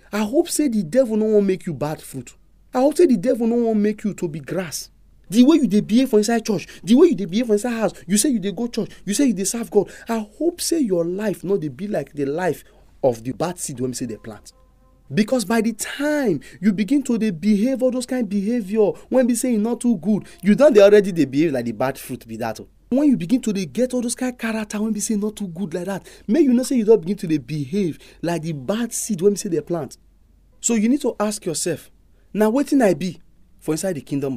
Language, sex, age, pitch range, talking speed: English, male, 40-59, 170-240 Hz, 270 wpm